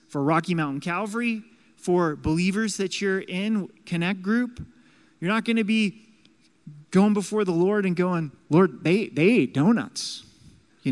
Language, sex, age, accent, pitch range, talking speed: English, male, 30-49, American, 150-210 Hz, 150 wpm